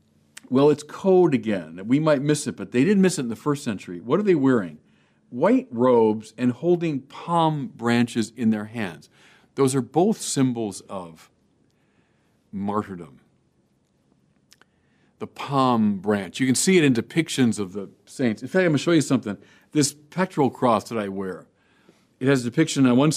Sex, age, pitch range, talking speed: male, 50-69, 110-155 Hz, 175 wpm